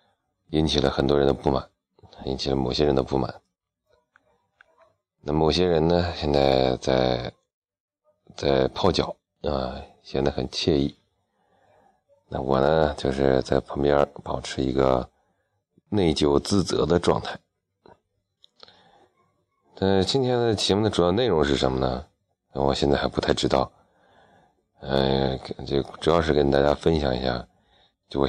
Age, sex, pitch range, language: 30-49, male, 65-80 Hz, Chinese